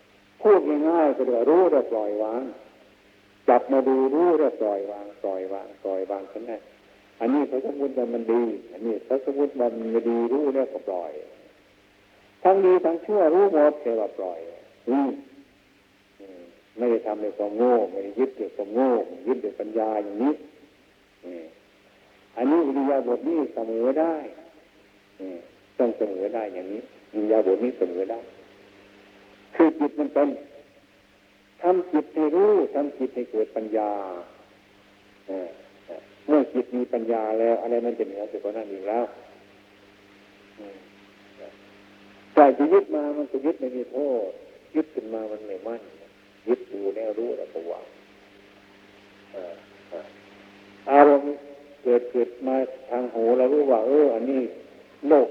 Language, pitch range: Thai, 100-140 Hz